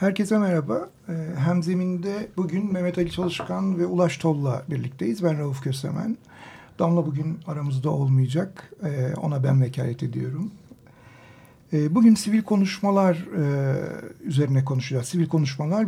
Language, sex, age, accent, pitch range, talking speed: Turkish, male, 60-79, native, 140-190 Hz, 110 wpm